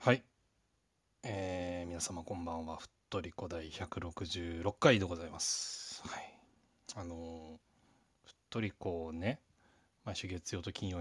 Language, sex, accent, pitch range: Japanese, male, native, 85-110 Hz